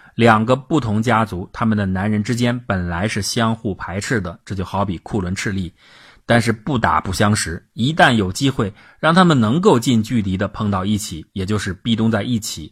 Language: Chinese